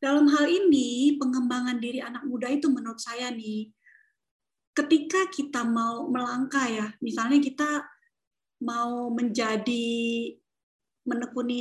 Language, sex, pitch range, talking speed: Indonesian, female, 250-310 Hz, 110 wpm